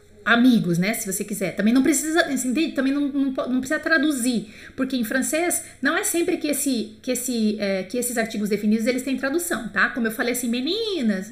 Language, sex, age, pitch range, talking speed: French, female, 30-49, 195-265 Hz, 205 wpm